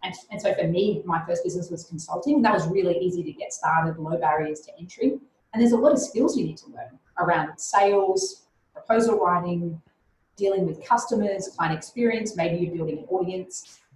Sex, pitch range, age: female, 160-205 Hz, 30-49